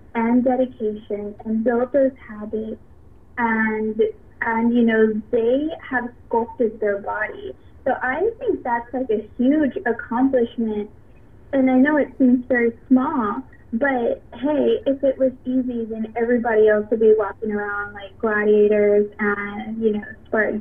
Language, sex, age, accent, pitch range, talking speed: English, female, 20-39, American, 220-255 Hz, 145 wpm